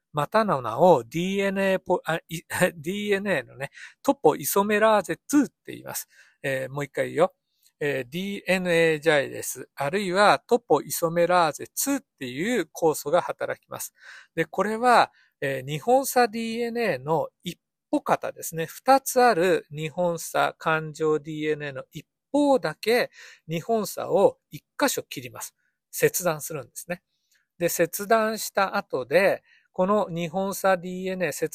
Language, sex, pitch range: Japanese, male, 160-230 Hz